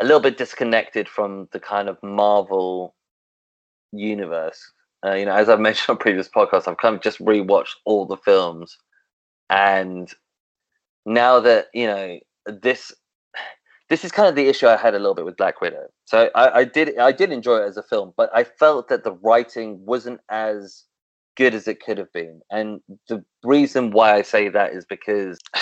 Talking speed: 190 wpm